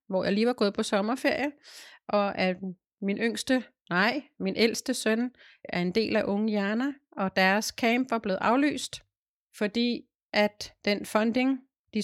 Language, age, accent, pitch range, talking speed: Danish, 30-49, native, 185-225 Hz, 160 wpm